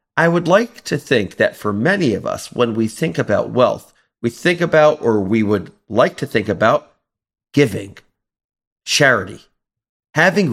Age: 40-59